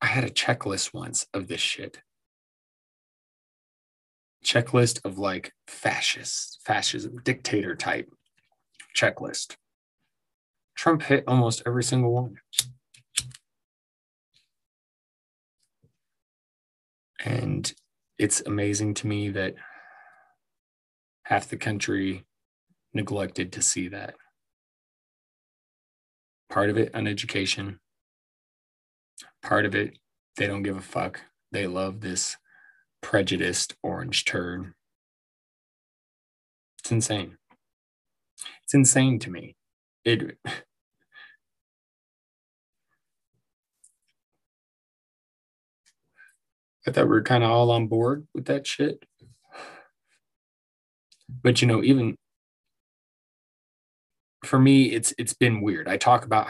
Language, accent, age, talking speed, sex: English, American, 20-39, 90 wpm, male